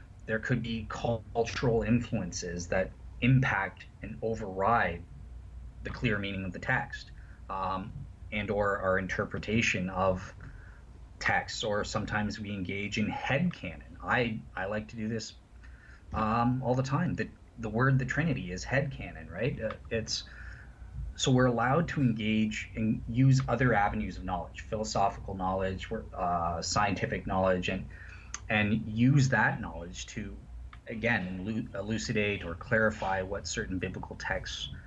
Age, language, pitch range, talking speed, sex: 20-39, English, 90-115 Hz, 135 wpm, male